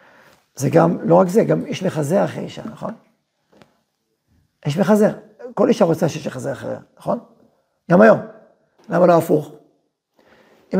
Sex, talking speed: male, 145 wpm